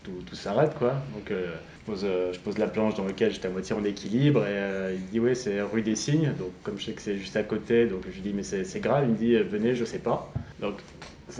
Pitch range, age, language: 100-120 Hz, 20-39, English